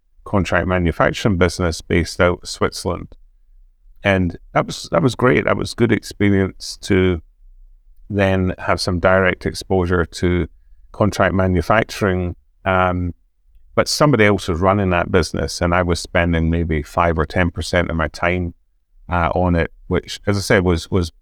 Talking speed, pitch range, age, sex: 155 wpm, 80-95 Hz, 40-59, male